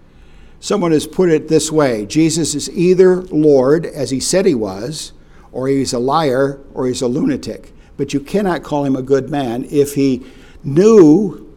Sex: male